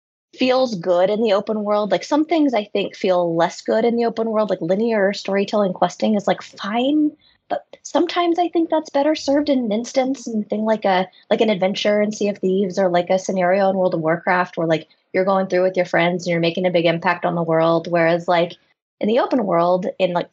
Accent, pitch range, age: American, 170-215 Hz, 20-39